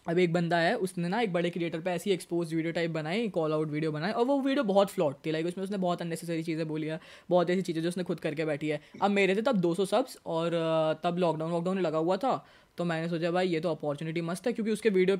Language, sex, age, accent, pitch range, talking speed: Hindi, female, 20-39, native, 155-185 Hz, 265 wpm